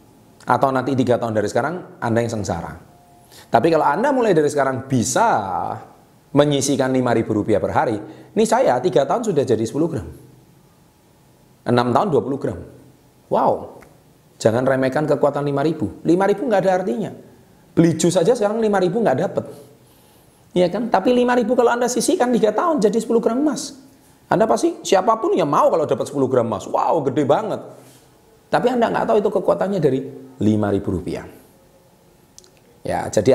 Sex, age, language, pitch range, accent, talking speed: male, 30-49, Indonesian, 105-145 Hz, native, 155 wpm